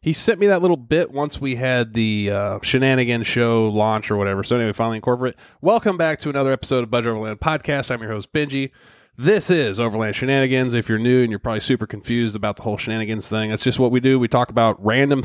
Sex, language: male, English